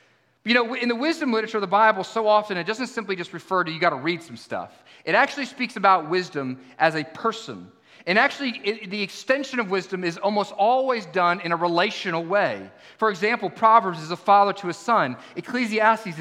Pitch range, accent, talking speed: 160-215 Hz, American, 205 wpm